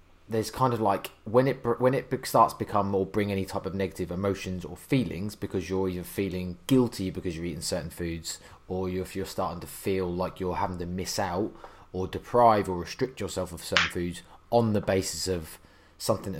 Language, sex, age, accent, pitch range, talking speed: English, male, 20-39, British, 85-105 Hz, 200 wpm